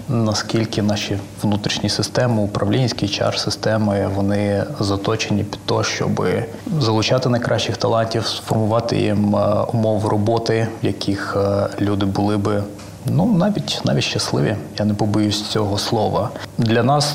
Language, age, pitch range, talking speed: Ukrainian, 20-39, 100-115 Hz, 130 wpm